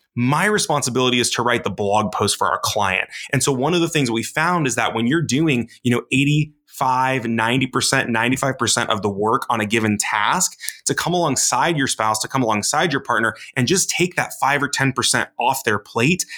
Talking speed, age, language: 205 wpm, 20-39, English